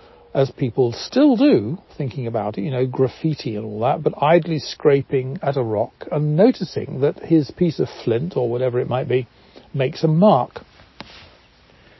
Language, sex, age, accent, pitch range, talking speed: English, male, 60-79, British, 120-165 Hz, 170 wpm